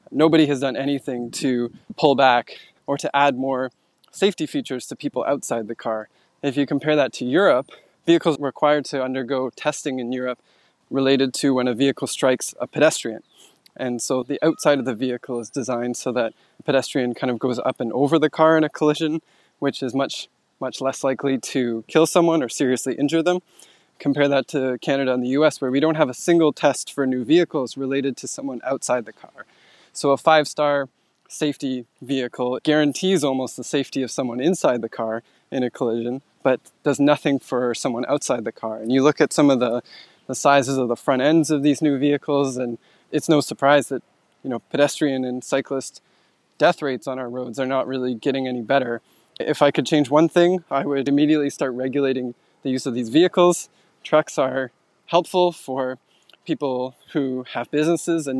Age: 20-39